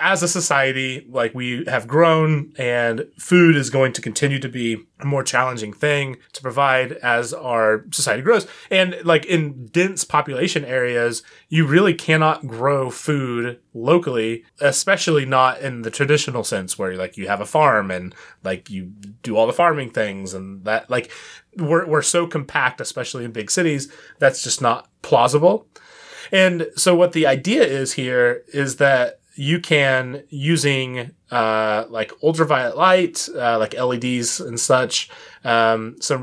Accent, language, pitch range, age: American, English, 120-155 Hz, 30-49